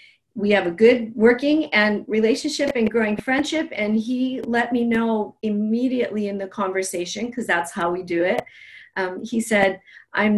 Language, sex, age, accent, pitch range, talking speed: English, female, 40-59, American, 185-230 Hz, 170 wpm